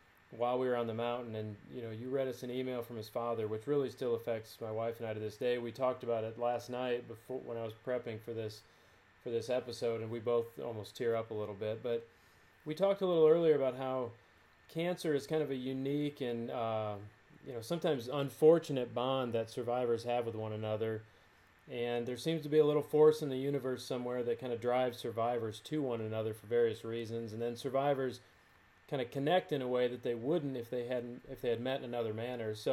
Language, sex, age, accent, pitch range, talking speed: English, male, 30-49, American, 115-135 Hz, 235 wpm